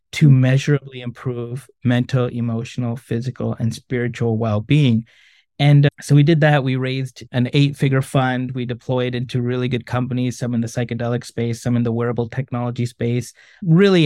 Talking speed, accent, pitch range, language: 160 wpm, American, 120-145 Hz, English